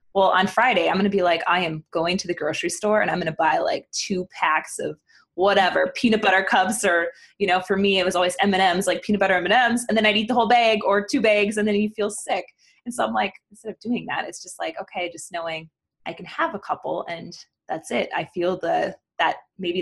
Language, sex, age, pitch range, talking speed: English, female, 20-39, 175-215 Hz, 250 wpm